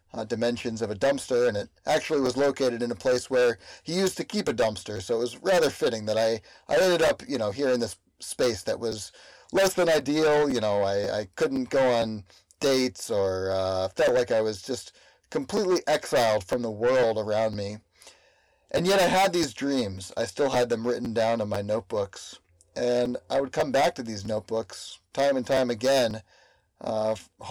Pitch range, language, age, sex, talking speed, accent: 110-140 Hz, English, 30-49, male, 200 wpm, American